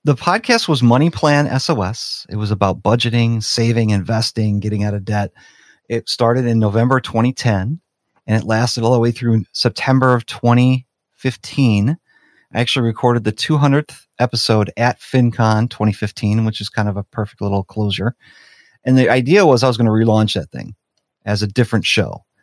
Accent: American